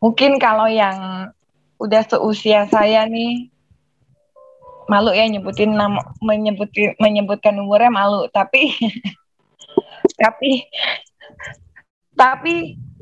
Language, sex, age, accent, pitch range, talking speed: Indonesian, female, 20-39, native, 190-225 Hz, 90 wpm